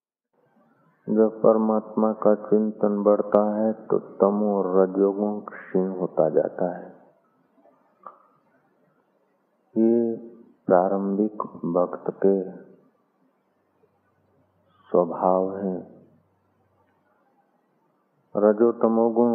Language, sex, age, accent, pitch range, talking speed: Hindi, male, 50-69, native, 95-110 Hz, 65 wpm